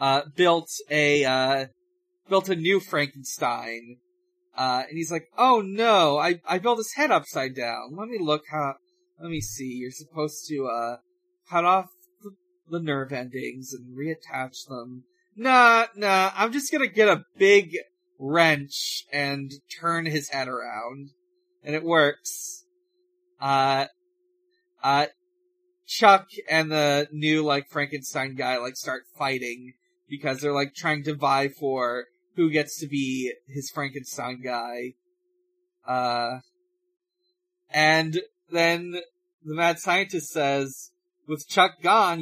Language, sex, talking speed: English, male, 135 wpm